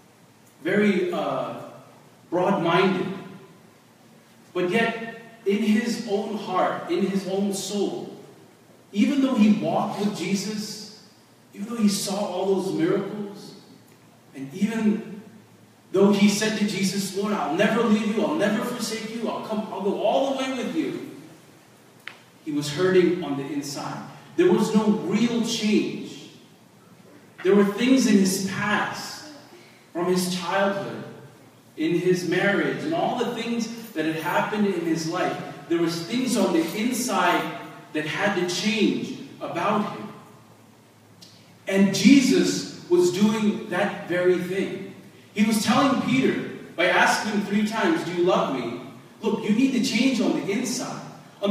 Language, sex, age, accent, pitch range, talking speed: English, male, 40-59, American, 185-225 Hz, 145 wpm